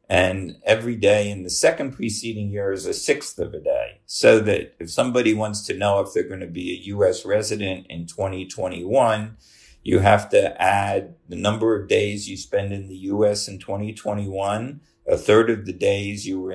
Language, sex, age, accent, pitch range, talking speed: English, male, 50-69, American, 95-115 Hz, 190 wpm